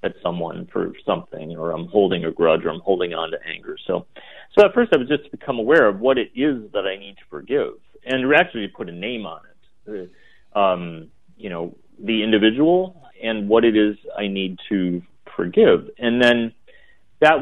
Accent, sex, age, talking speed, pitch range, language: American, male, 40-59, 195 wpm, 110-155 Hz, English